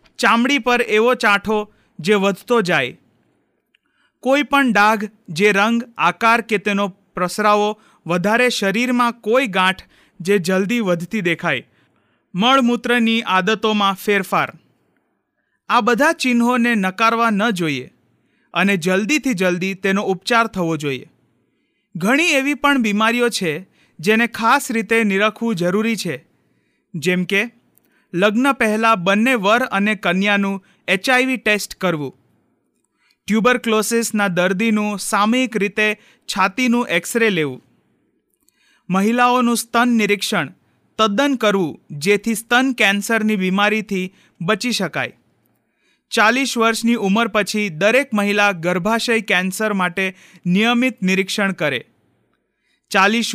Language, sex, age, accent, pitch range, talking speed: Gujarati, male, 30-49, native, 190-235 Hz, 95 wpm